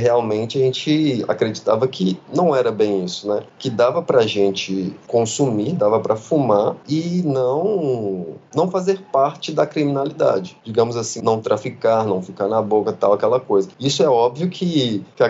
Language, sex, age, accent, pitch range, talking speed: Portuguese, male, 30-49, Brazilian, 105-145 Hz, 165 wpm